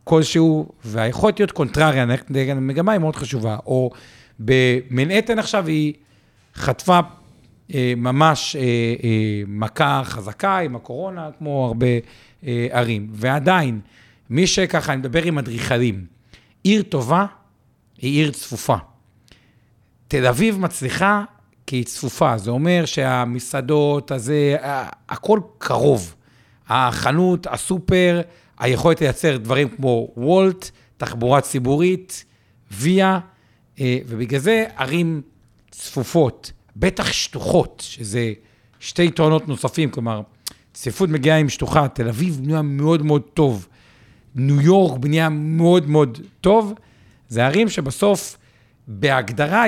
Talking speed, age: 110 wpm, 50-69